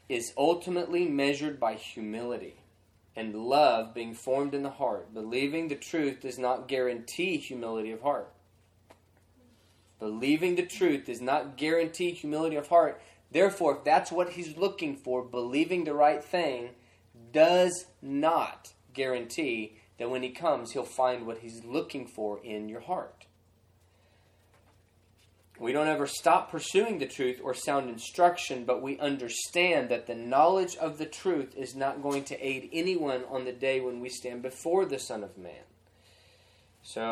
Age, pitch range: 20-39, 110-155 Hz